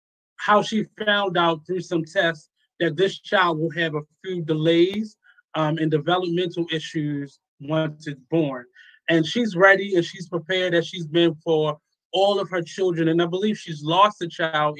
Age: 20-39